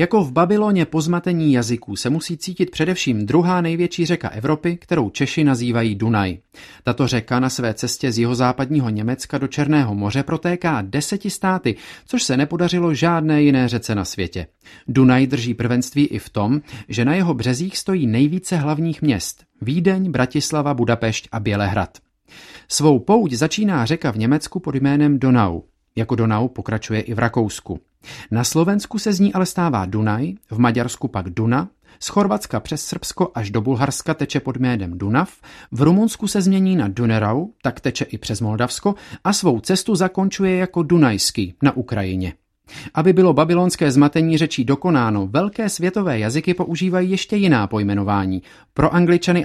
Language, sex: Czech, male